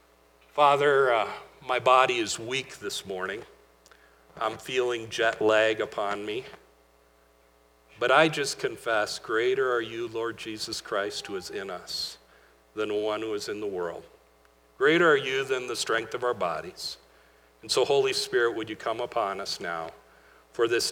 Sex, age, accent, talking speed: male, 50-69, American, 165 wpm